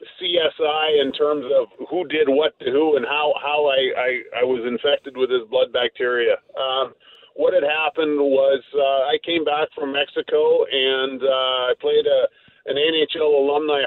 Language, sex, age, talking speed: English, male, 40-59, 165 wpm